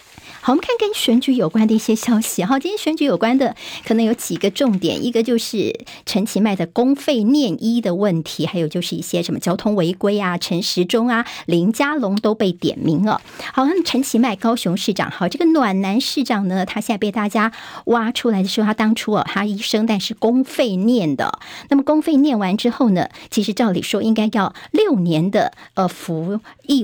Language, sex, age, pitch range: Chinese, male, 50-69, 195-240 Hz